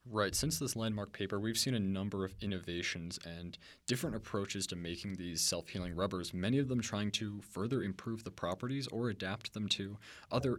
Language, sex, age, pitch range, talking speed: English, male, 20-39, 90-130 Hz, 185 wpm